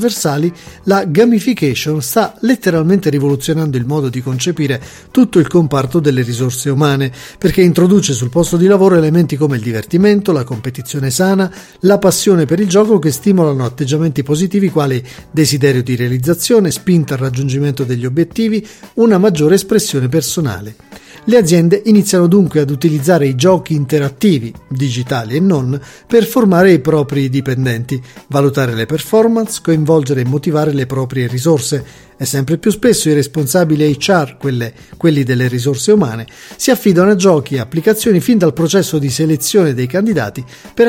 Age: 40-59